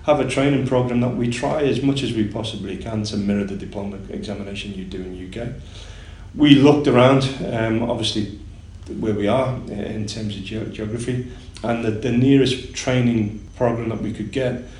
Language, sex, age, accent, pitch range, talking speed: English, male, 40-59, British, 100-120 Hz, 185 wpm